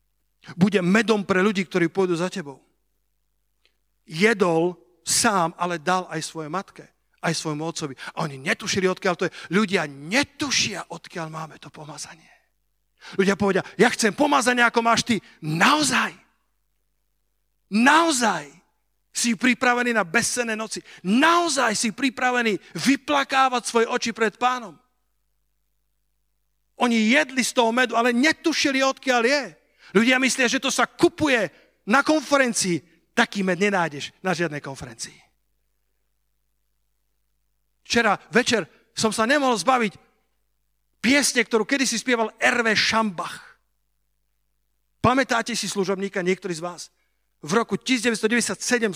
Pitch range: 165-240 Hz